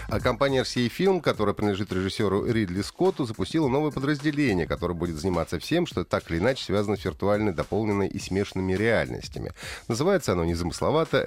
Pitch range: 90-135 Hz